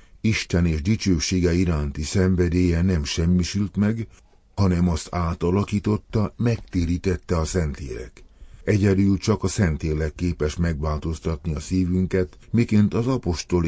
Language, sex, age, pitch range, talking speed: Hungarian, male, 50-69, 75-100 Hz, 110 wpm